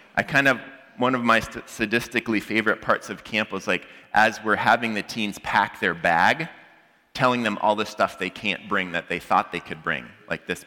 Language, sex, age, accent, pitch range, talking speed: English, male, 30-49, American, 105-165 Hz, 210 wpm